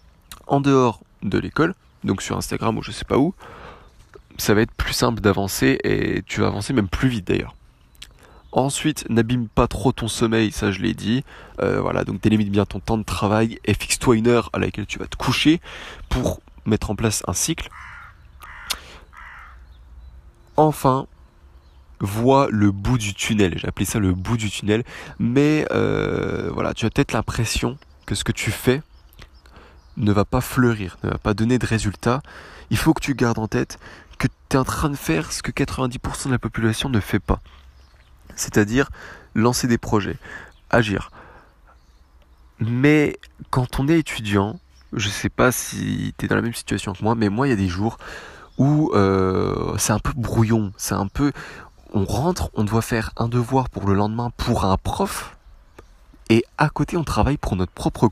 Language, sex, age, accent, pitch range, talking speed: French, male, 20-39, French, 95-125 Hz, 185 wpm